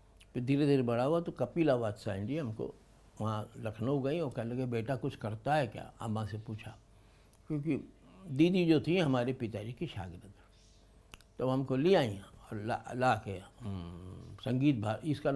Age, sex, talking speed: 60-79, male, 165 wpm